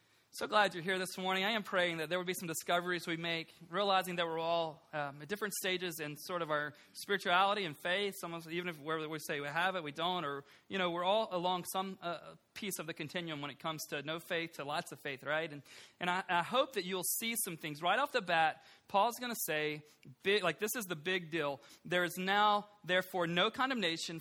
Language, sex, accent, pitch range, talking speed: English, male, American, 155-200 Hz, 240 wpm